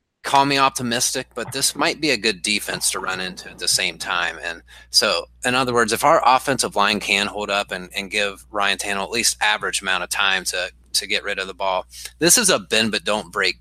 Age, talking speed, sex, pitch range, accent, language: 30-49, 240 wpm, male, 100-120 Hz, American, English